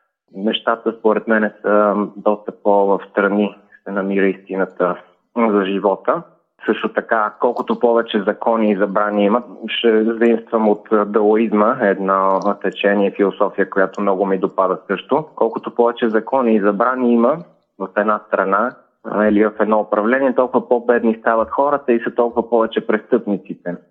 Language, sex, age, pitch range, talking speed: Bulgarian, male, 20-39, 105-120 Hz, 135 wpm